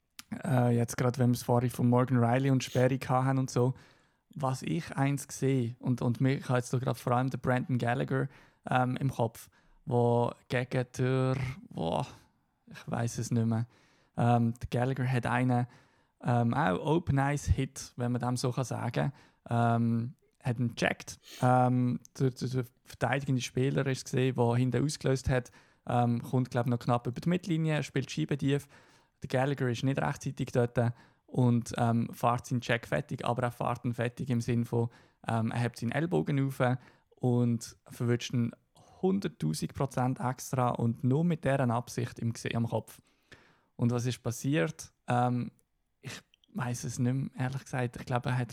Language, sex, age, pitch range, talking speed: German, male, 20-39, 120-135 Hz, 165 wpm